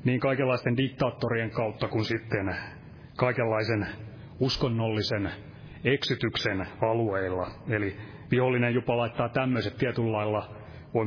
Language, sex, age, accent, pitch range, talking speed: Finnish, male, 30-49, native, 105-130 Hz, 90 wpm